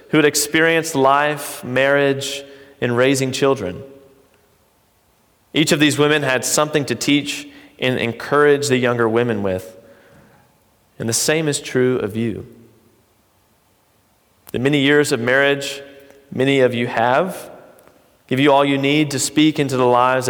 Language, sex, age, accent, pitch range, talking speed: English, male, 30-49, American, 120-140 Hz, 140 wpm